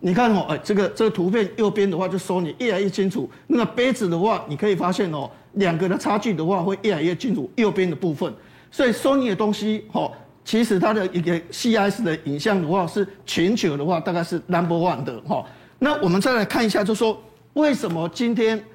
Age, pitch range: 50-69, 180-235 Hz